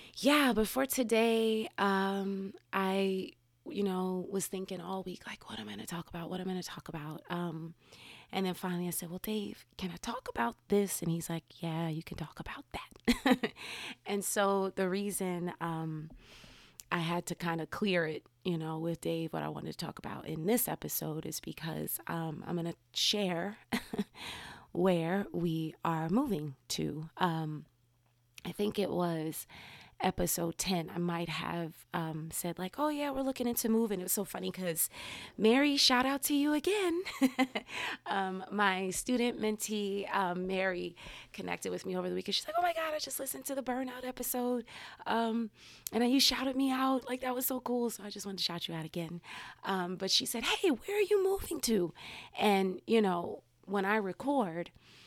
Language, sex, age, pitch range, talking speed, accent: English, female, 30-49, 170-230 Hz, 195 wpm, American